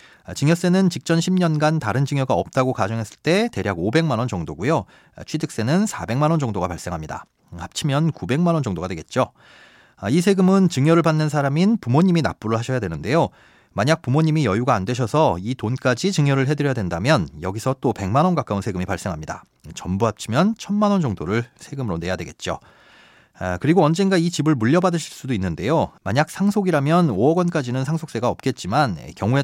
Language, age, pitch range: Korean, 30-49, 110-170 Hz